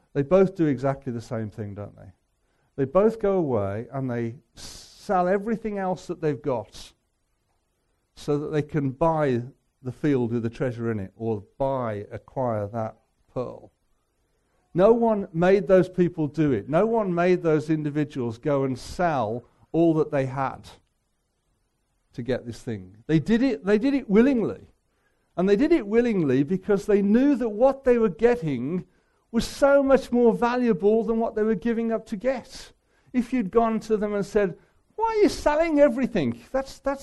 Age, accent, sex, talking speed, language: 50-69, British, male, 170 wpm, English